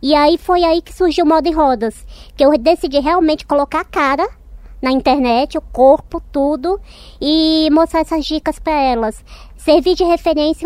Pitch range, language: 260-320 Hz, Portuguese